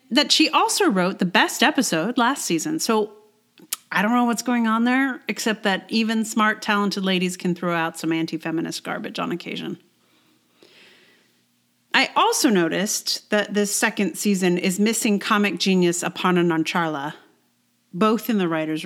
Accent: American